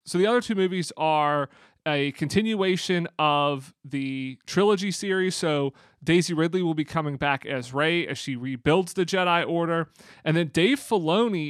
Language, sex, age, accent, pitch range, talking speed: English, male, 30-49, American, 140-170 Hz, 160 wpm